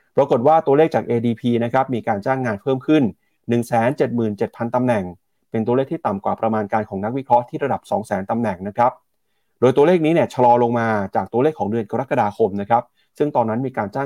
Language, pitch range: Thai, 110-140 Hz